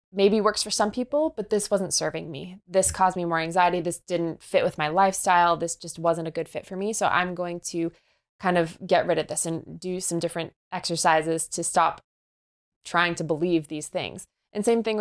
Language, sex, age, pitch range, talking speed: English, female, 20-39, 165-185 Hz, 215 wpm